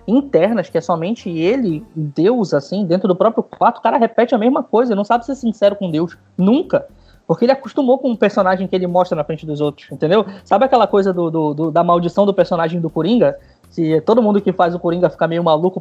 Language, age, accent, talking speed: Portuguese, 20-39, Brazilian, 215 wpm